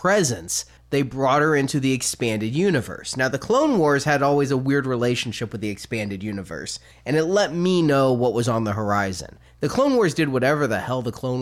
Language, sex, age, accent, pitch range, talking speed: English, male, 30-49, American, 120-150 Hz, 210 wpm